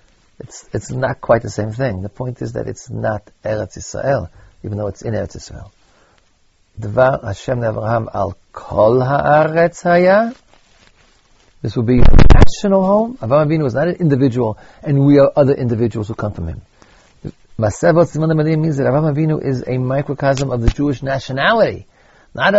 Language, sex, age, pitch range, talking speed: English, male, 50-69, 105-145 Hz, 145 wpm